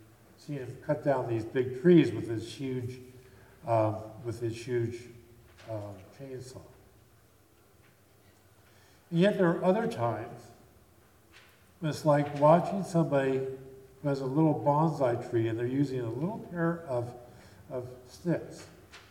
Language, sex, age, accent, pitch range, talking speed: English, male, 50-69, American, 105-150 Hz, 135 wpm